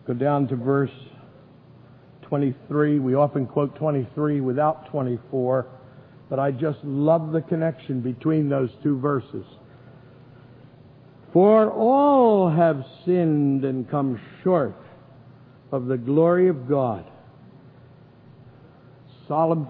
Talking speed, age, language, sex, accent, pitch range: 105 wpm, 60-79, English, male, American, 130-160 Hz